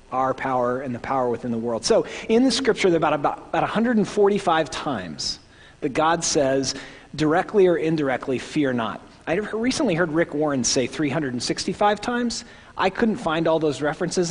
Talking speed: 170 wpm